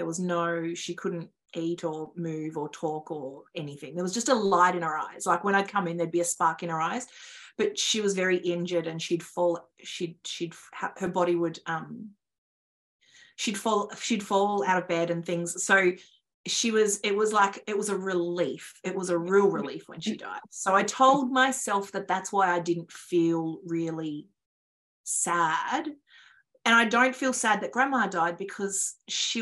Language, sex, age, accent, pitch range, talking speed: English, female, 30-49, Australian, 175-235 Hz, 195 wpm